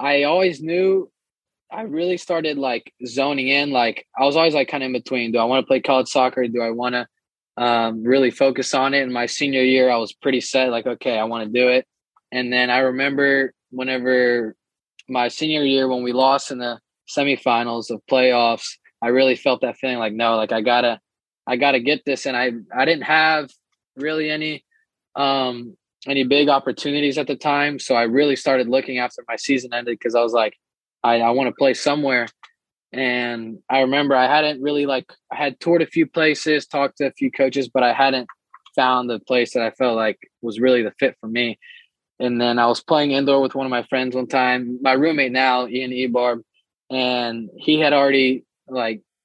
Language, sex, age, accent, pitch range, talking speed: English, male, 20-39, American, 120-140 Hz, 205 wpm